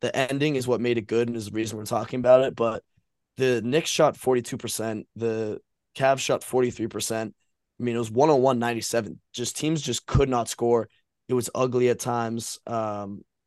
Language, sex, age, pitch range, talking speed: English, male, 20-39, 110-125 Hz, 185 wpm